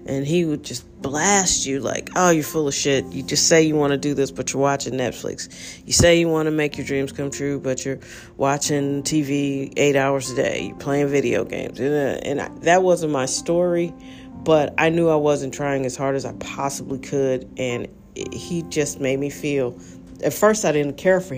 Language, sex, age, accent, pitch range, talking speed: English, female, 40-59, American, 130-155 Hz, 210 wpm